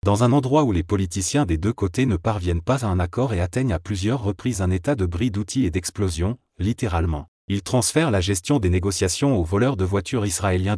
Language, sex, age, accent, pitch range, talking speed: French, male, 30-49, French, 90-125 Hz, 215 wpm